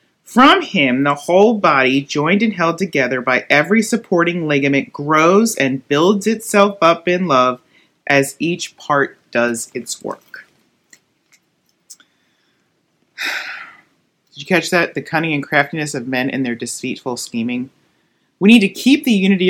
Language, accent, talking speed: English, American, 140 wpm